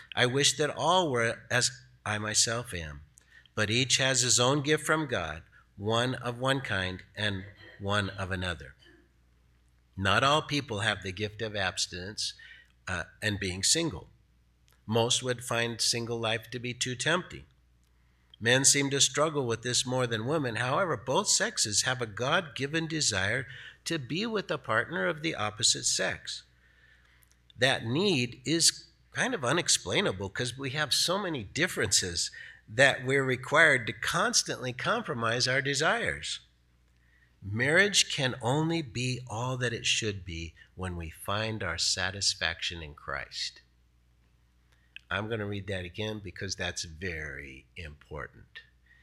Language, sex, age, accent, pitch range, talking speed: English, male, 50-69, American, 85-130 Hz, 140 wpm